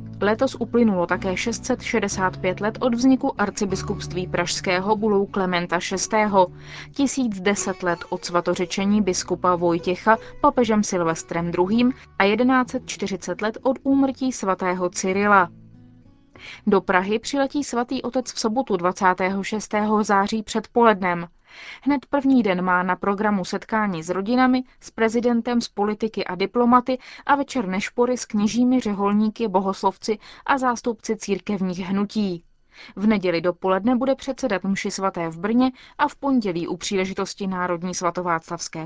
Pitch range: 180-240 Hz